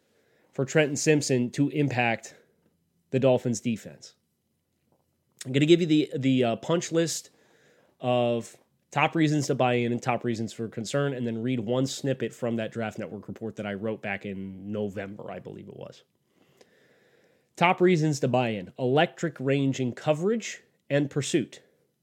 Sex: male